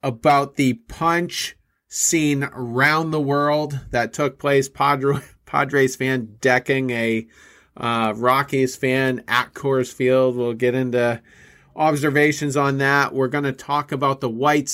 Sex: male